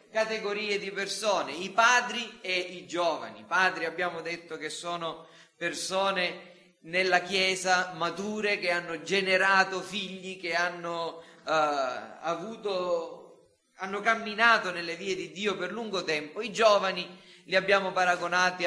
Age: 30-49